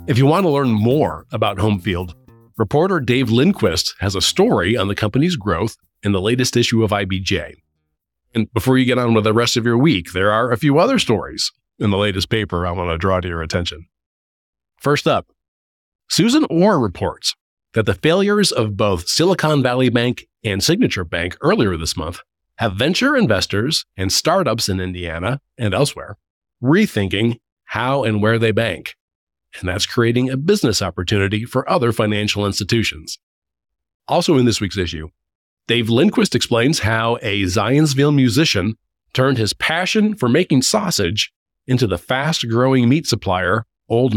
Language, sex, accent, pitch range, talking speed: English, male, American, 95-125 Hz, 165 wpm